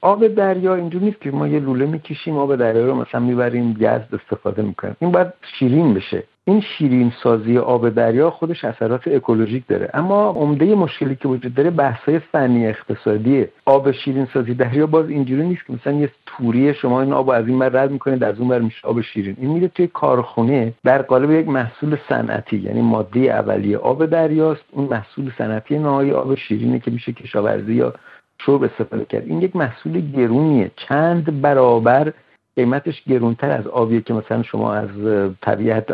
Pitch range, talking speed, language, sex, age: 115-145 Hz, 175 wpm, Persian, male, 50-69